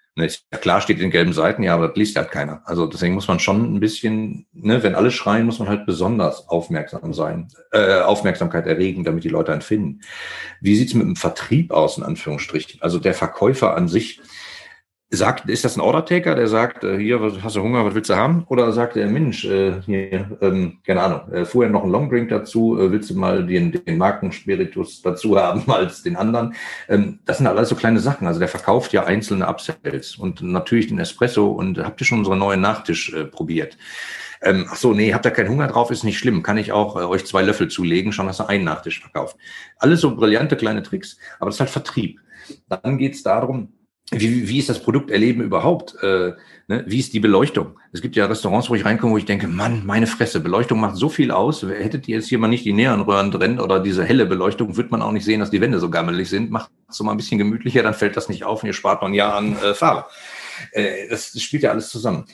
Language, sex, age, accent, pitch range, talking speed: German, male, 40-59, German, 100-125 Hz, 220 wpm